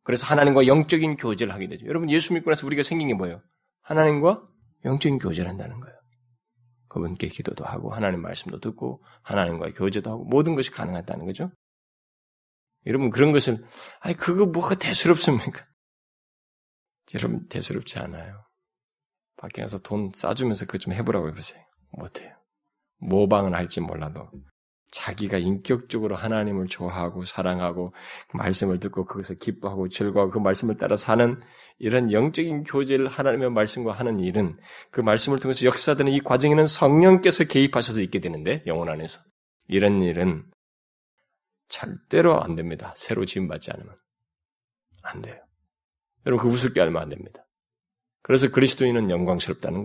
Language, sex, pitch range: Korean, male, 95-135 Hz